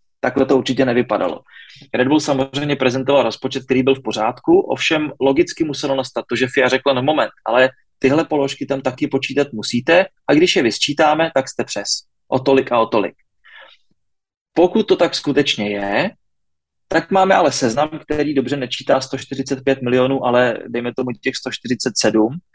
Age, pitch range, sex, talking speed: 30-49, 120-145 Hz, male, 160 wpm